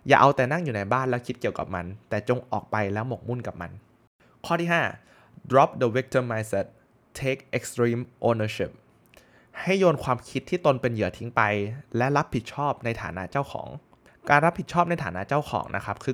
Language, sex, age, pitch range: Thai, male, 20-39, 110-145 Hz